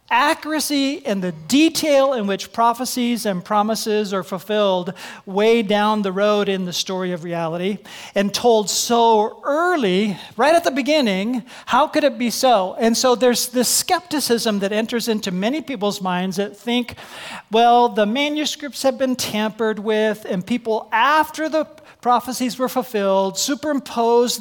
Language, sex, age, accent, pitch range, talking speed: English, male, 40-59, American, 205-255 Hz, 150 wpm